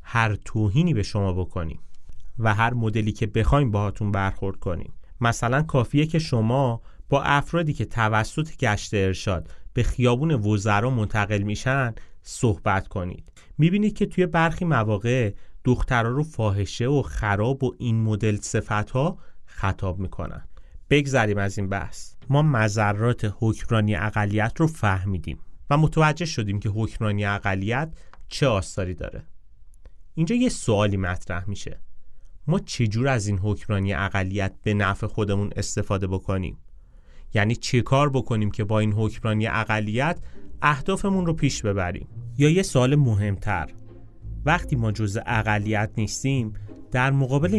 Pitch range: 100-130 Hz